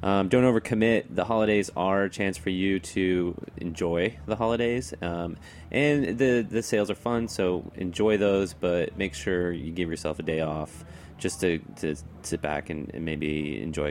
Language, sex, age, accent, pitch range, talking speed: English, male, 30-49, American, 80-100 Hz, 180 wpm